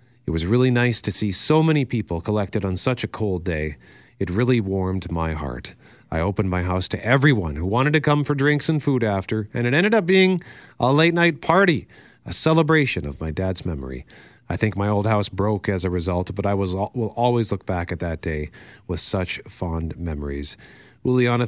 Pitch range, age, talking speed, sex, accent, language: 90-130 Hz, 40-59, 205 wpm, male, American, English